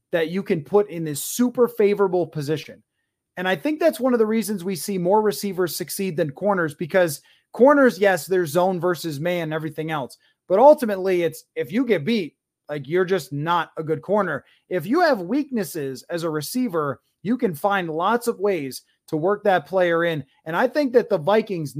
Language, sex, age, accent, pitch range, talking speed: English, male, 20-39, American, 165-210 Hz, 200 wpm